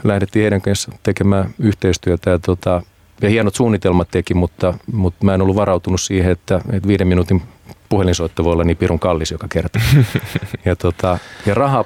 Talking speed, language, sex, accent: 170 wpm, Finnish, male, native